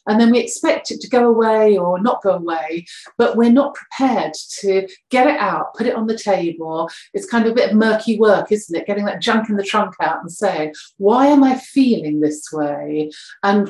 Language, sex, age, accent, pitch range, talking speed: English, female, 40-59, British, 170-230 Hz, 225 wpm